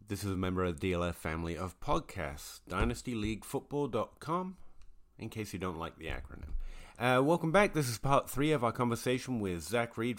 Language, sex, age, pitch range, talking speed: English, male, 30-49, 90-125 Hz, 185 wpm